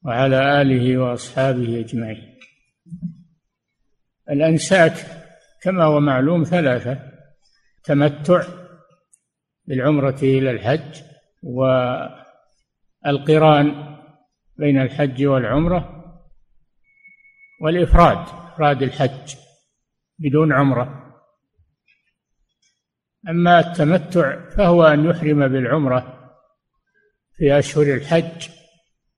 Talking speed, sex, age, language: 65 wpm, male, 60-79, Arabic